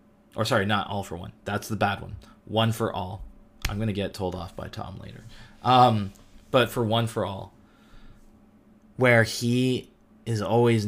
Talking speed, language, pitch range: 170 wpm, English, 95-110 Hz